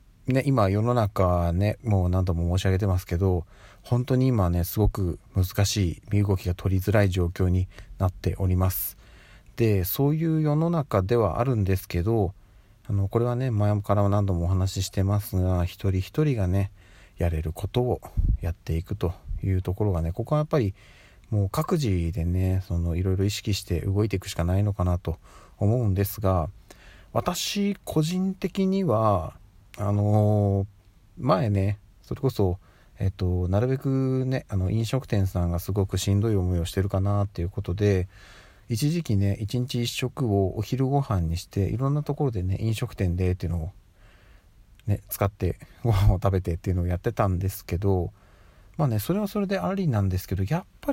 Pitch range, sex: 95-115 Hz, male